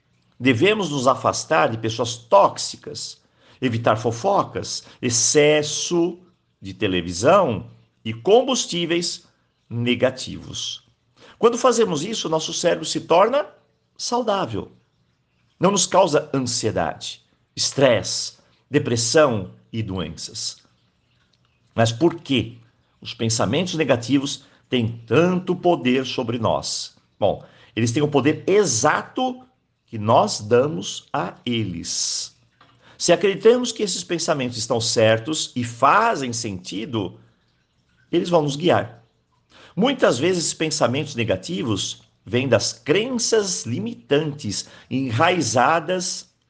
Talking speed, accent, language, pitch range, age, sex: 100 wpm, Brazilian, Portuguese, 115-175 Hz, 50-69, male